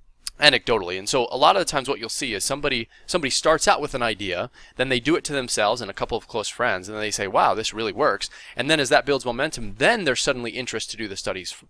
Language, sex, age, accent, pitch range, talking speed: English, male, 20-39, American, 95-130 Hz, 270 wpm